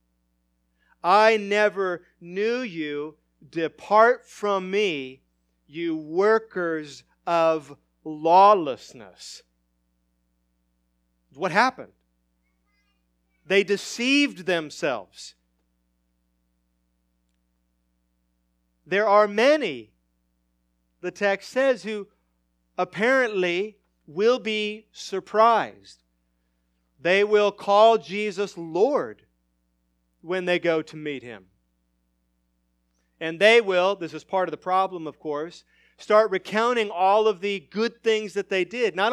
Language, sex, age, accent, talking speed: English, male, 40-59, American, 90 wpm